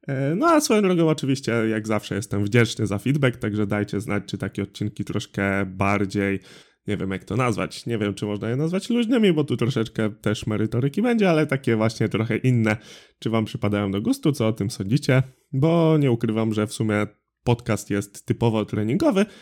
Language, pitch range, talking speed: Polish, 105-140 Hz, 190 wpm